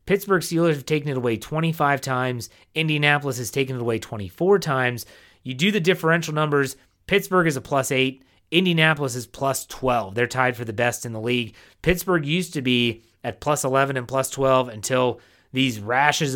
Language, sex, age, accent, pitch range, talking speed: English, male, 30-49, American, 120-160 Hz, 185 wpm